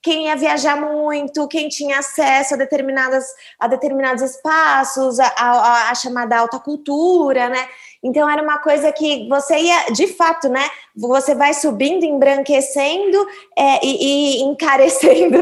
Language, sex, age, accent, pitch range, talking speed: Portuguese, female, 20-39, Brazilian, 245-295 Hz, 145 wpm